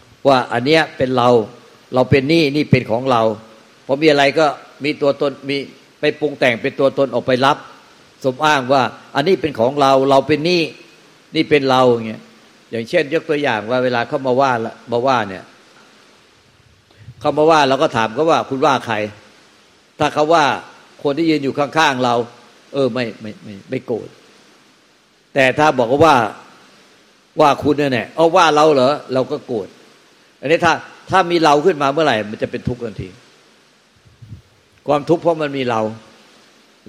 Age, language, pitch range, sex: 60-79, Thai, 120-150 Hz, male